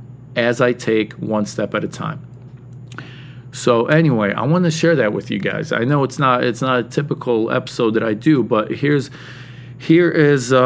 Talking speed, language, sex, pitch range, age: 210 wpm, English, male, 120-145 Hz, 40-59